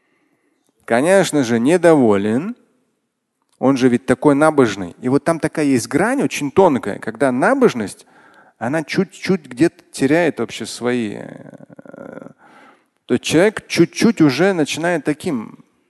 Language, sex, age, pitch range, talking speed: Russian, male, 40-59, 145-220 Hz, 115 wpm